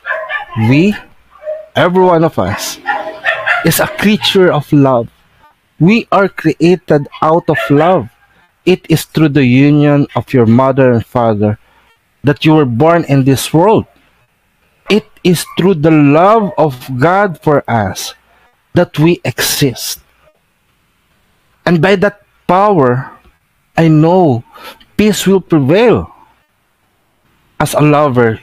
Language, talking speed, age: English, 120 wpm, 50-69